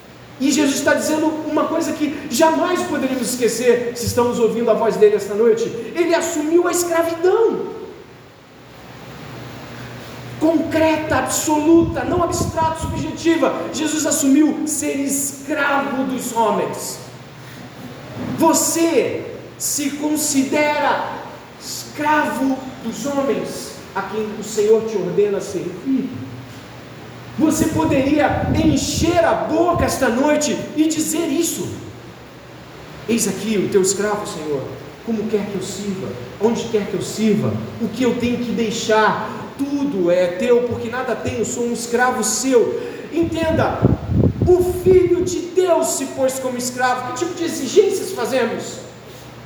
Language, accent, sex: Portuguese, Brazilian, male